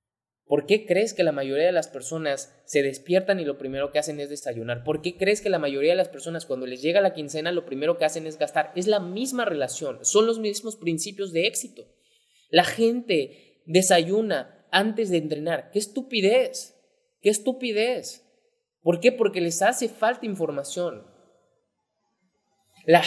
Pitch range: 175-240 Hz